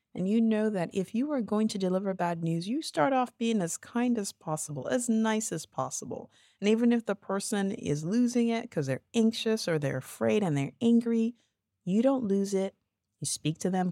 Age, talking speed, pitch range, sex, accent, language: 50-69, 210 wpm, 150-230 Hz, female, American, English